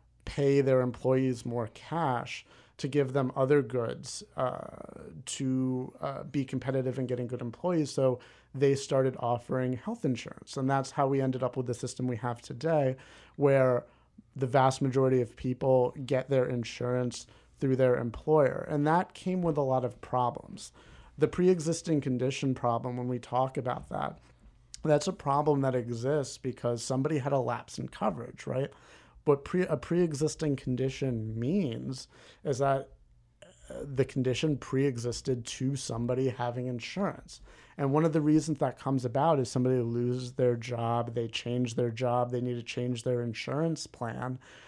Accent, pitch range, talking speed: American, 125-145 Hz, 165 wpm